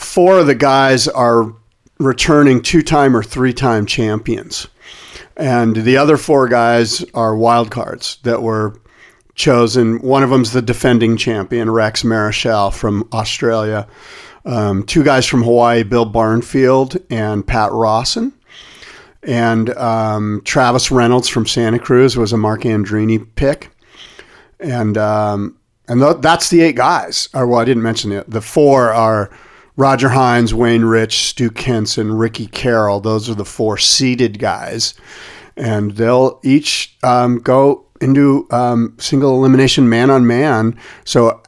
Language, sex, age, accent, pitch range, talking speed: English, male, 50-69, American, 110-130 Hz, 135 wpm